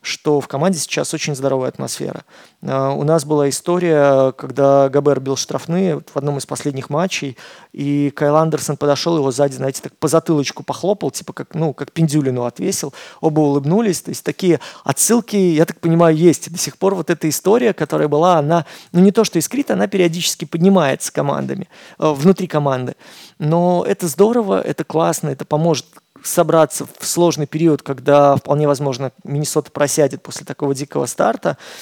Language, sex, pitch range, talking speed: Russian, male, 140-165 Hz, 165 wpm